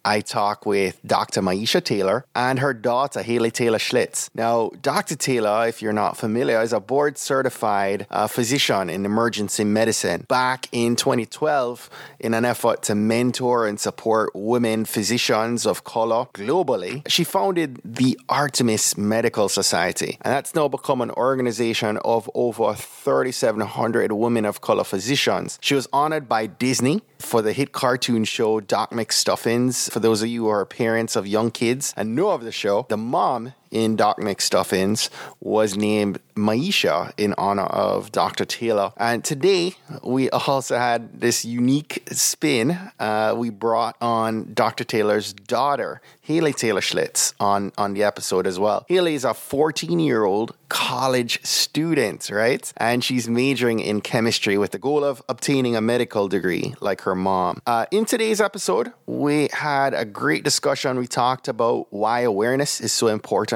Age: 30-49